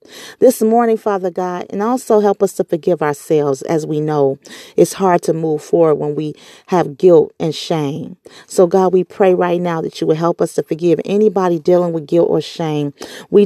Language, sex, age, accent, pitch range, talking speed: English, female, 40-59, American, 160-205 Hz, 200 wpm